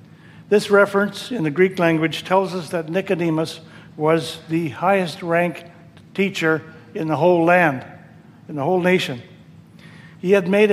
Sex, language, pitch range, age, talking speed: male, English, 160-190 Hz, 60-79, 145 wpm